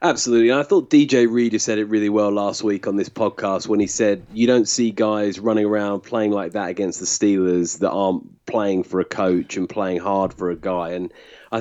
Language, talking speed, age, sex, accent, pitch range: English, 230 wpm, 30-49, male, British, 105-120 Hz